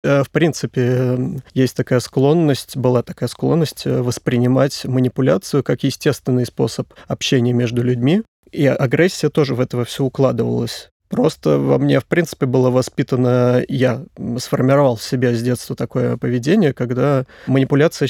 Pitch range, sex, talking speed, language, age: 125-135 Hz, male, 135 wpm, Russian, 20-39